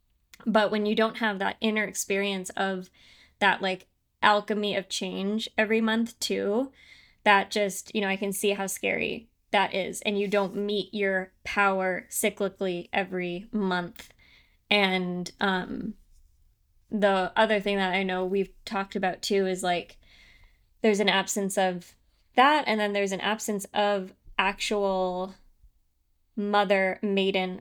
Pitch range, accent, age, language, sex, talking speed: 190-215 Hz, American, 20-39, English, female, 140 wpm